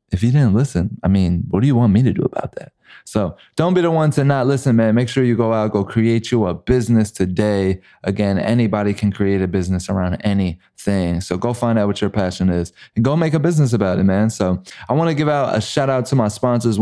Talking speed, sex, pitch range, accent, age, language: 255 wpm, male, 100-120 Hz, American, 20-39, English